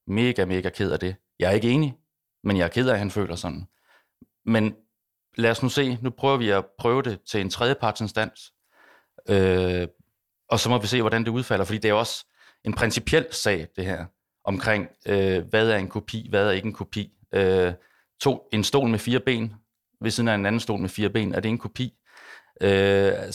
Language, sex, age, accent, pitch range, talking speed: Danish, male, 30-49, native, 95-115 Hz, 210 wpm